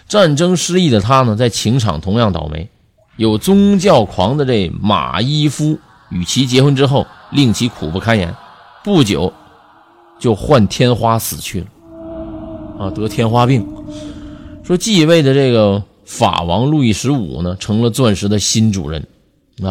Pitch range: 95-125 Hz